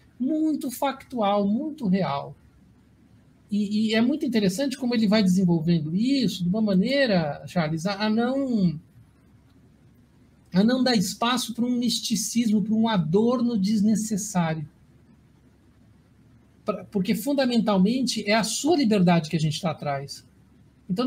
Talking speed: 130 wpm